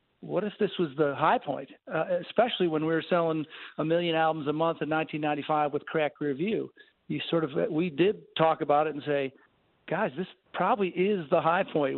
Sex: male